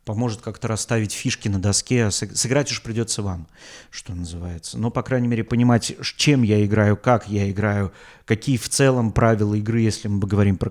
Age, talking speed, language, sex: 30-49, 190 wpm, Russian, male